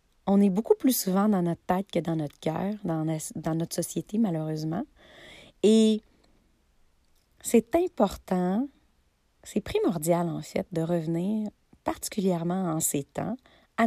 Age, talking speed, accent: 30-49, 135 wpm, Canadian